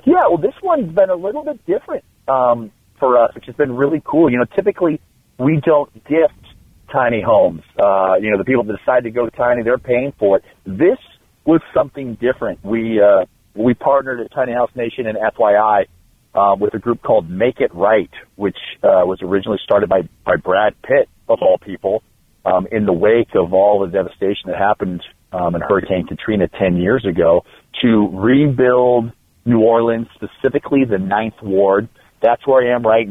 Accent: American